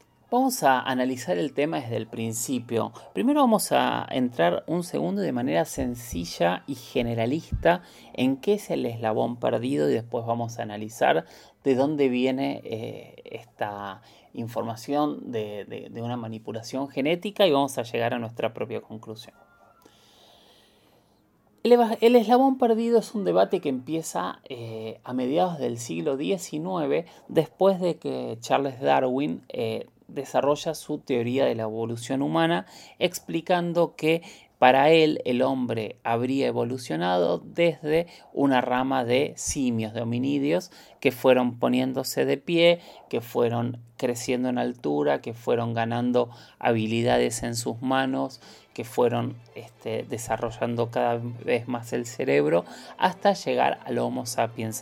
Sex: male